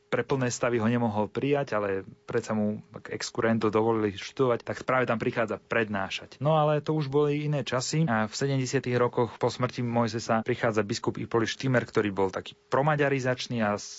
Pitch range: 100-120 Hz